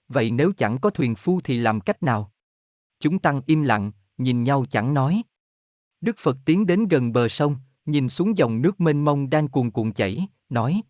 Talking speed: 200 wpm